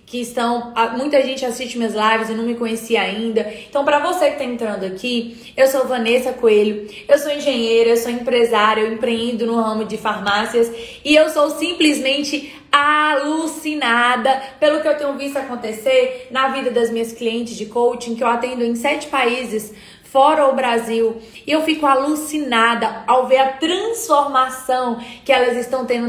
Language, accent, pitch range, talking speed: Portuguese, Brazilian, 230-290 Hz, 170 wpm